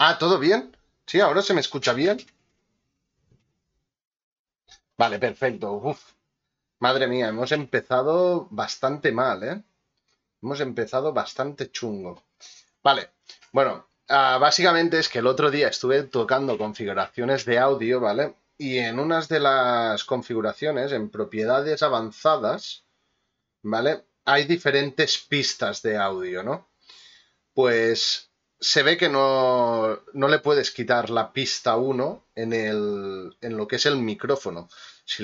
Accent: Spanish